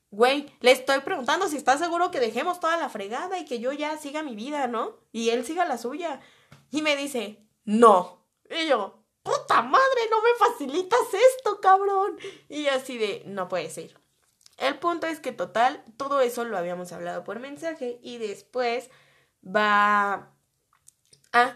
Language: Spanish